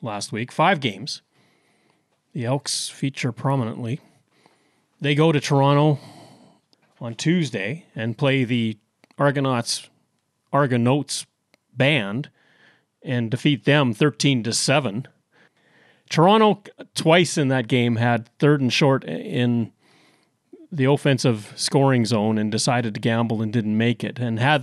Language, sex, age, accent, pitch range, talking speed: English, male, 30-49, American, 115-140 Hz, 120 wpm